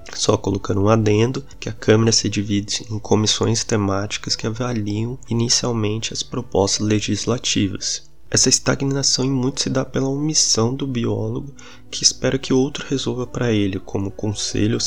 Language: Portuguese